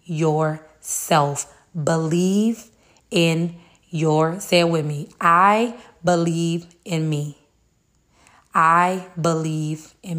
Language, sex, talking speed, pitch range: English, female, 90 wpm, 160-190 Hz